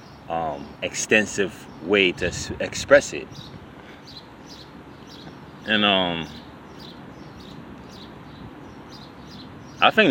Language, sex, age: English, male, 20-39